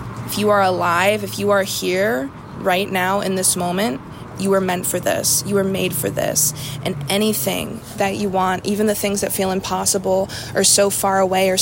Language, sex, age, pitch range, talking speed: English, female, 20-39, 180-200 Hz, 200 wpm